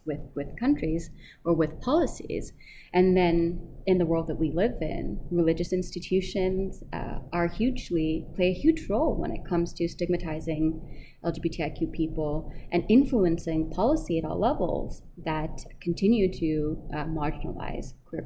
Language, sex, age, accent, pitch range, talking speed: English, female, 30-49, American, 155-180 Hz, 140 wpm